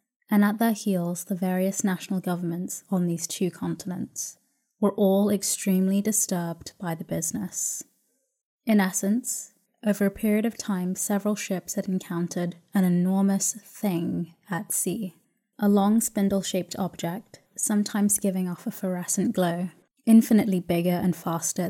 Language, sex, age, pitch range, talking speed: English, female, 20-39, 180-210 Hz, 135 wpm